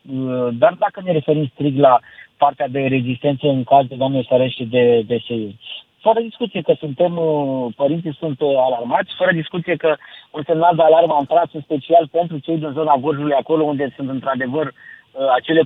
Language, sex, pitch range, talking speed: Romanian, male, 140-175 Hz, 170 wpm